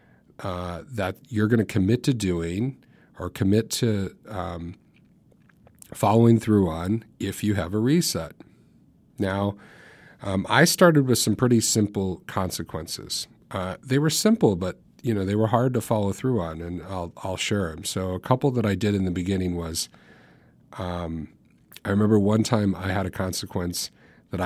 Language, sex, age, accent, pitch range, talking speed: English, male, 40-59, American, 90-110 Hz, 170 wpm